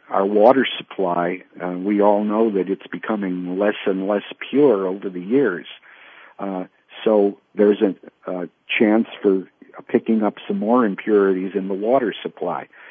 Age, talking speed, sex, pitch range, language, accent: 50-69, 155 wpm, male, 90-110 Hz, English, American